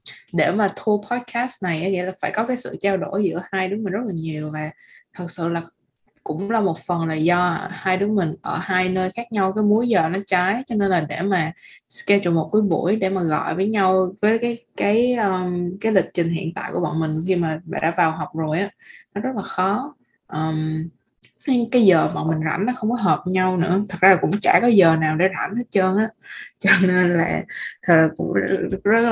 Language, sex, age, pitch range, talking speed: Vietnamese, female, 20-39, 165-210 Hz, 235 wpm